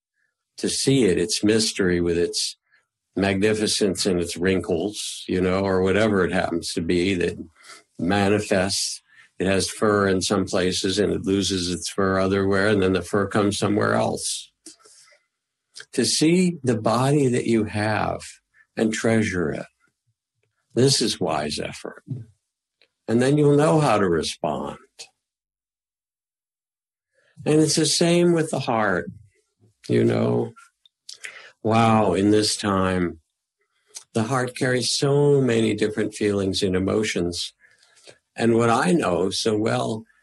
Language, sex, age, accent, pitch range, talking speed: English, male, 60-79, American, 95-115 Hz, 135 wpm